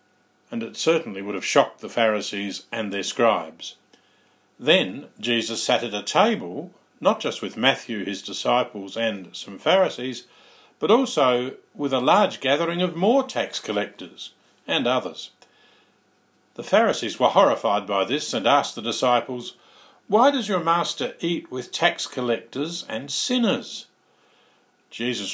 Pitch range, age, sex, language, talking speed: 115-160 Hz, 50-69, male, English, 140 wpm